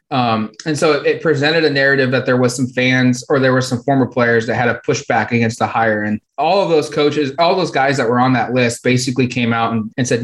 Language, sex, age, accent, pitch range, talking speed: English, male, 20-39, American, 120-135 Hz, 260 wpm